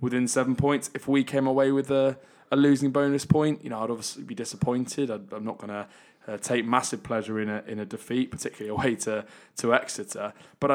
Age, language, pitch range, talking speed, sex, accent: 20-39, English, 105-125 Hz, 210 wpm, male, British